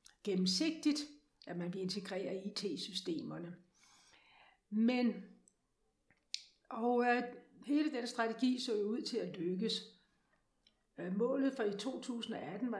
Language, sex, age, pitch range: Danish, female, 60-79, 200-245 Hz